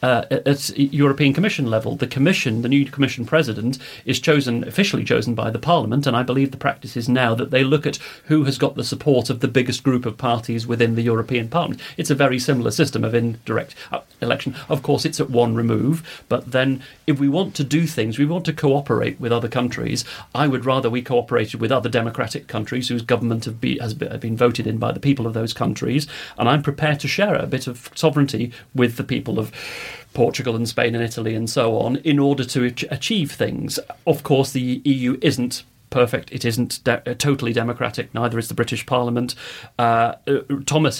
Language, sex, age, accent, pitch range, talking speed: English, male, 40-59, British, 115-140 Hz, 210 wpm